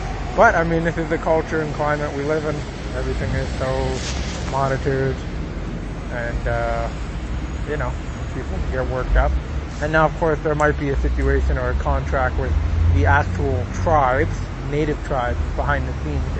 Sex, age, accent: male, 20-39, American